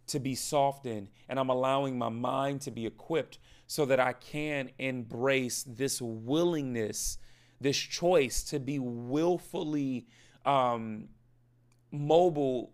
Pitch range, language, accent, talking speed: 120-145 Hz, English, American, 120 wpm